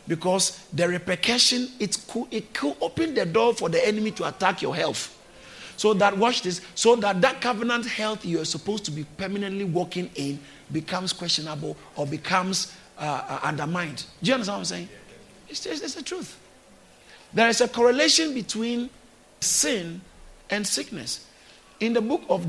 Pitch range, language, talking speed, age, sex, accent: 160-215 Hz, English, 170 wpm, 50-69, male, Nigerian